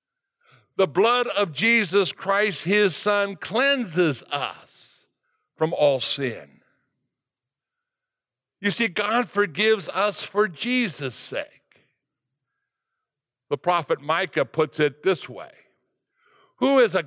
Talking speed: 105 wpm